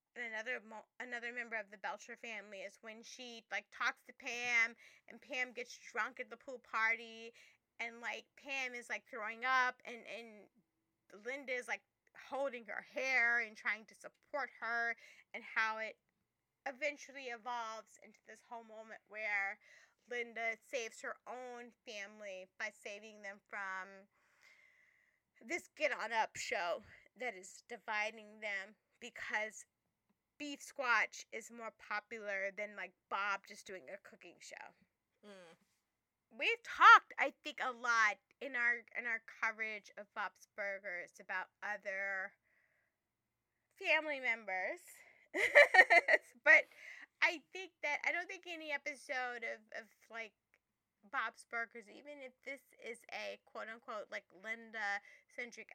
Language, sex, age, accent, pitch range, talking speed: English, female, 20-39, American, 210-275 Hz, 135 wpm